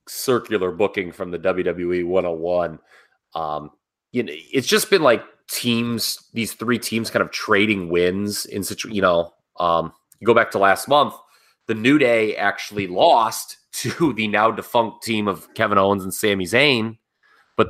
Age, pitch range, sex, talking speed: 30-49, 95-125 Hz, male, 170 wpm